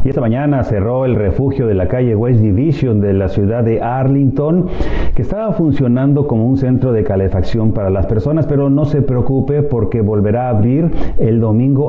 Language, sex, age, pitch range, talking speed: Spanish, male, 40-59, 100-135 Hz, 185 wpm